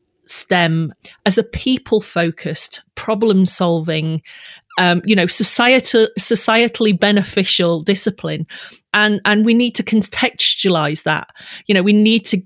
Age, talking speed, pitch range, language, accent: 30-49, 125 wpm, 165-195 Hz, English, British